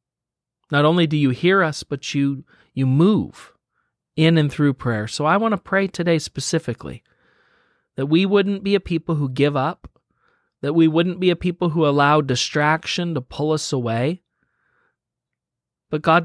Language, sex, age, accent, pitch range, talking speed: English, male, 40-59, American, 125-165 Hz, 165 wpm